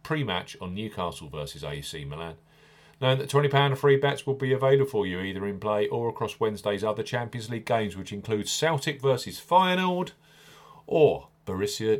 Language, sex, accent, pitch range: English, male, British, 105-140 Hz